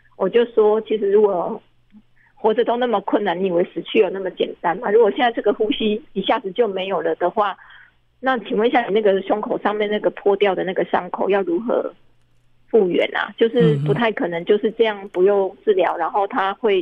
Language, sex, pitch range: Chinese, female, 195-245 Hz